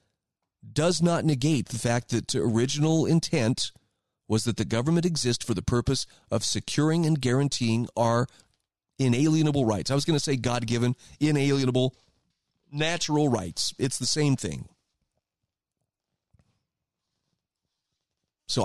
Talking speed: 120 wpm